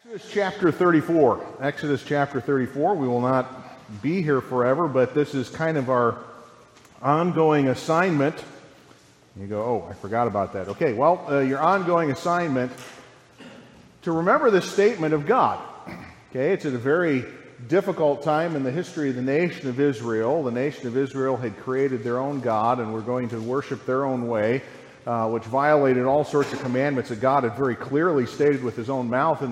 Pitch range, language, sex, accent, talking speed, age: 125-160 Hz, English, male, American, 180 wpm, 40-59